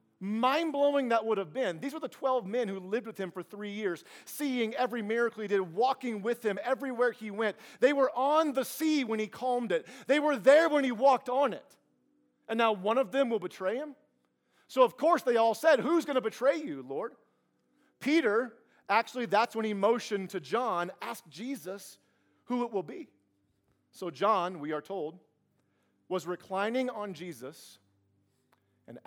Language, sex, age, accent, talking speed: English, male, 40-59, American, 185 wpm